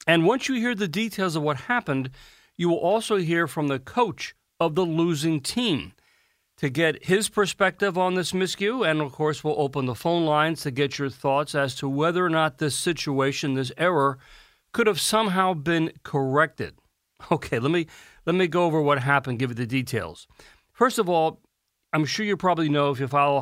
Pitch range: 135-175 Hz